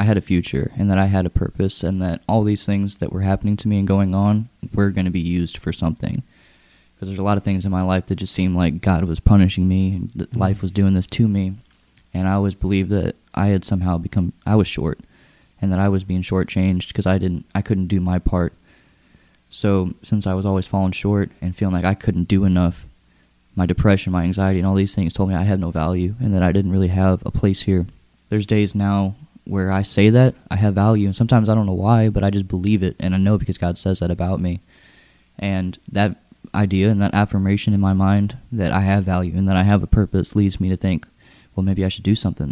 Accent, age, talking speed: American, 10-29, 250 wpm